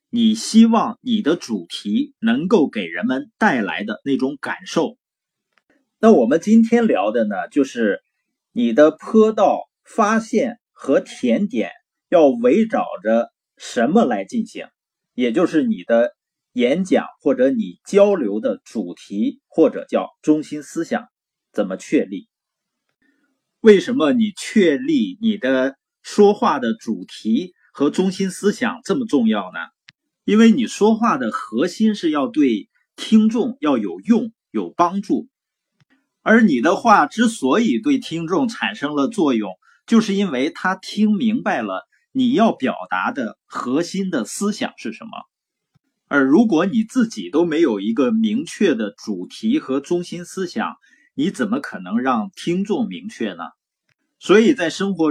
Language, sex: Chinese, male